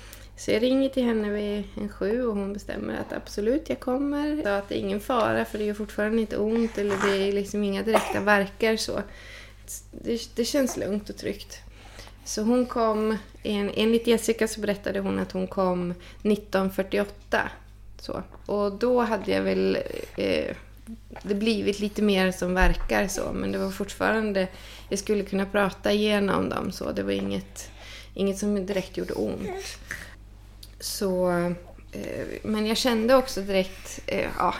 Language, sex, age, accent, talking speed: English, female, 20-39, Swedish, 165 wpm